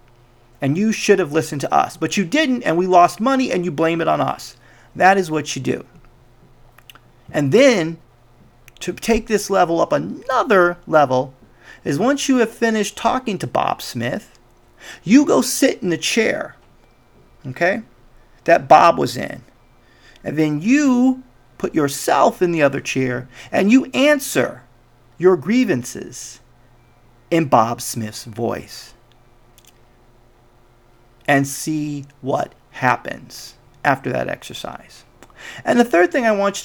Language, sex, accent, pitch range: English, male, American, 120-200 Hz